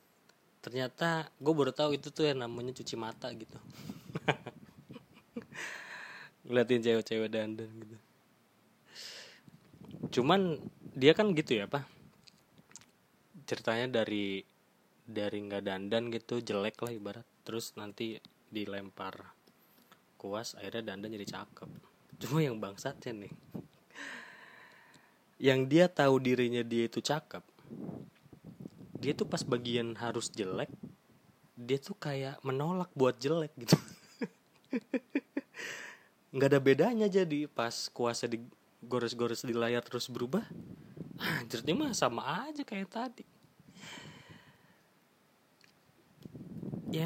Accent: native